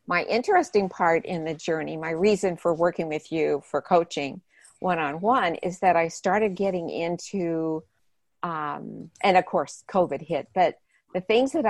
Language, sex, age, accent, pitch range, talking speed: English, female, 50-69, American, 160-195 Hz, 160 wpm